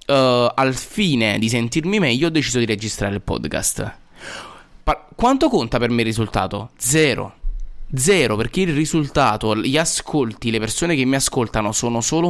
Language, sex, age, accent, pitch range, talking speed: Italian, male, 20-39, native, 115-150 Hz, 150 wpm